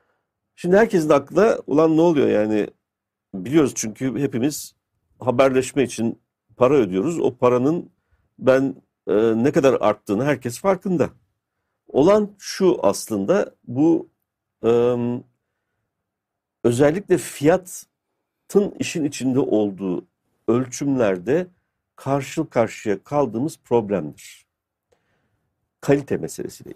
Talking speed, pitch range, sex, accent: 90 wpm, 95-150 Hz, male, native